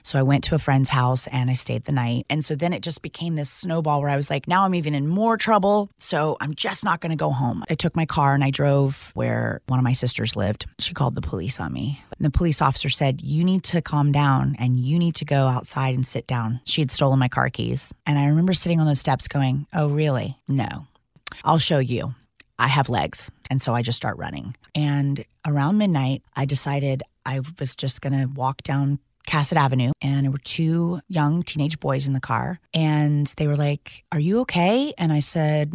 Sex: female